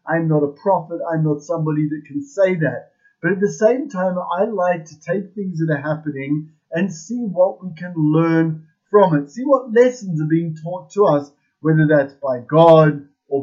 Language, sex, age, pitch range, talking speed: English, male, 30-49, 155-205 Hz, 200 wpm